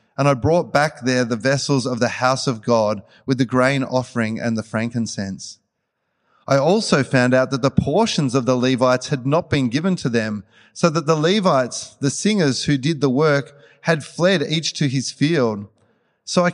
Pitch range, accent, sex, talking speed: 120-150 Hz, Australian, male, 190 wpm